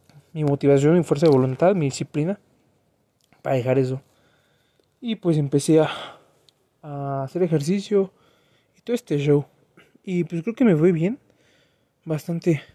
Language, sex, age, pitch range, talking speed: Spanish, male, 20-39, 145-185 Hz, 140 wpm